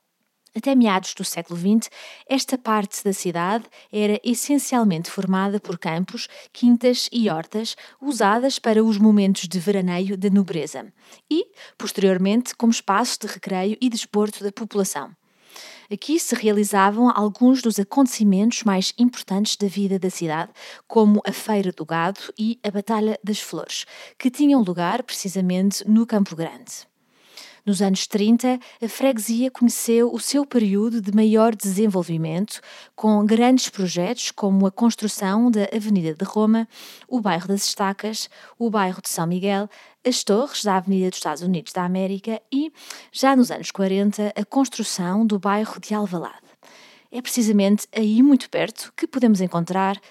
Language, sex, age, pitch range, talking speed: Portuguese, female, 20-39, 195-235 Hz, 145 wpm